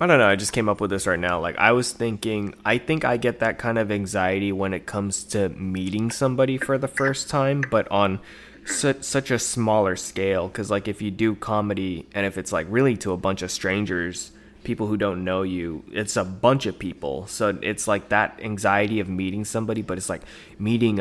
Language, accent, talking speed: English, American, 220 wpm